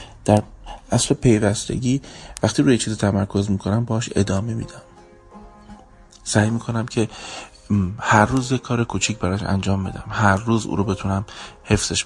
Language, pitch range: Persian, 90-110 Hz